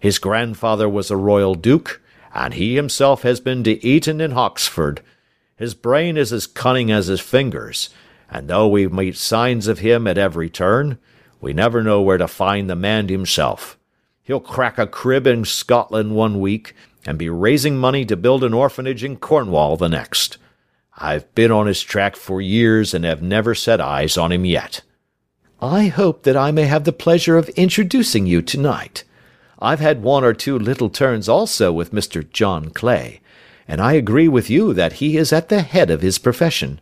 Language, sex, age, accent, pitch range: Korean, male, 50-69, American, 95-135 Hz